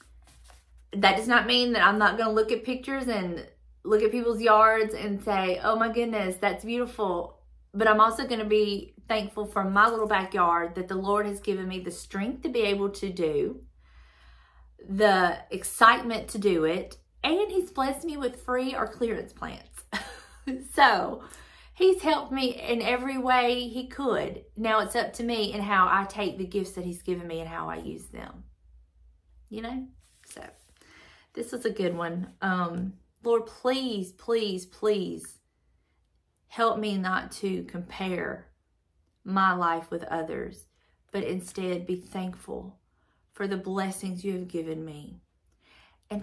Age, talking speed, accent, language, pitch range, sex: 30-49, 160 wpm, American, English, 160-225 Hz, female